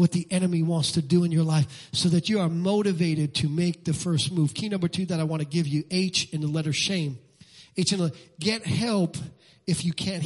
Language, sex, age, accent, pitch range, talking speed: English, male, 40-59, American, 165-225 Hz, 245 wpm